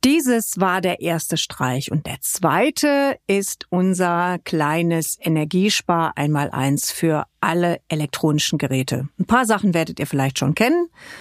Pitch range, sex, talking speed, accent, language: 155-200 Hz, female, 140 wpm, German, German